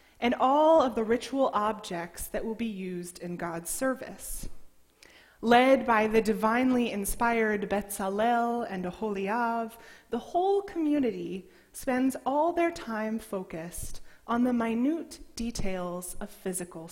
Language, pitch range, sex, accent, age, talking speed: English, 195-280 Hz, female, American, 20-39, 125 wpm